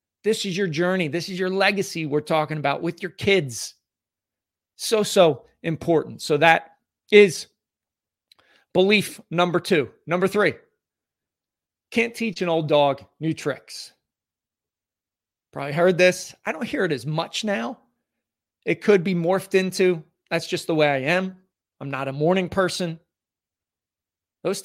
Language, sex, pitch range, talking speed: English, male, 135-190 Hz, 145 wpm